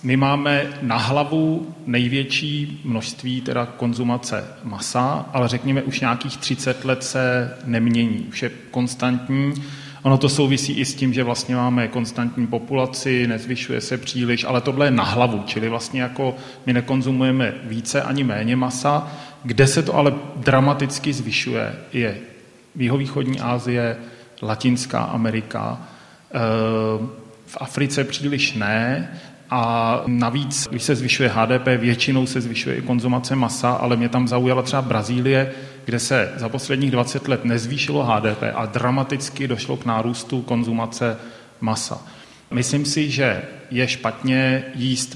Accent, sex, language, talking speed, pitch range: native, male, Czech, 135 wpm, 120-135 Hz